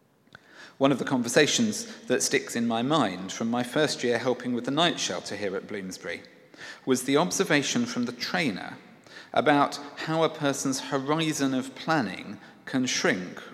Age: 40-59